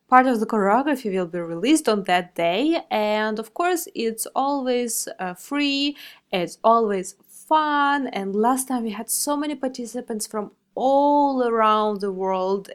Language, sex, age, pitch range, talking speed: English, female, 20-39, 200-265 Hz, 155 wpm